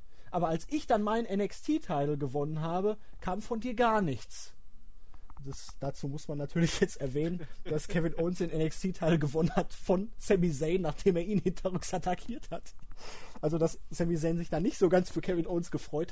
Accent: German